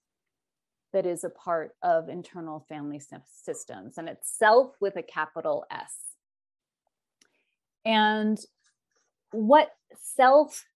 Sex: female